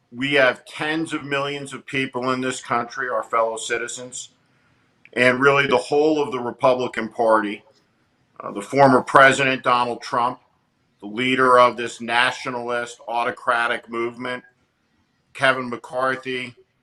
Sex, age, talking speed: male, 50-69, 130 wpm